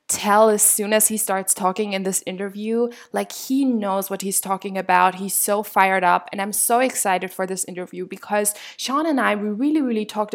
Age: 10-29